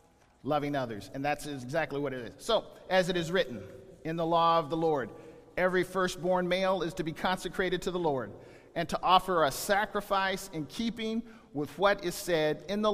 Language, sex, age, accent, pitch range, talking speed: English, male, 50-69, American, 165-230 Hz, 195 wpm